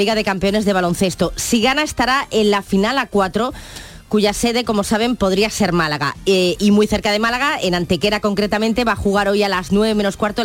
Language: Spanish